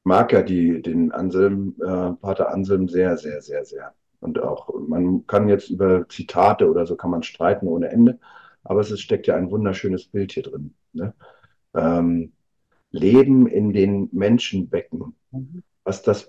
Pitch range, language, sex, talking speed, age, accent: 100-135 Hz, German, male, 150 wpm, 50-69, German